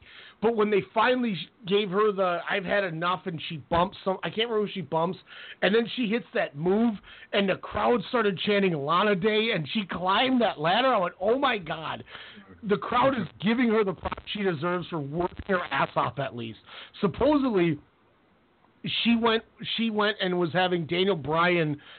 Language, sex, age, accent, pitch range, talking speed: English, male, 40-59, American, 160-210 Hz, 190 wpm